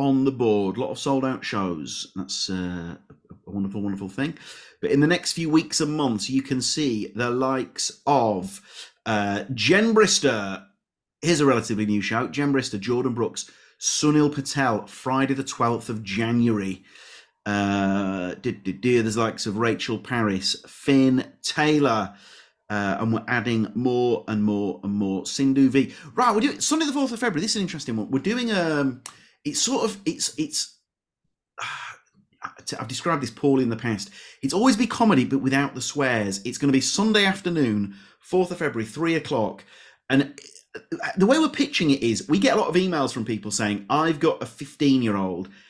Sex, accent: male, British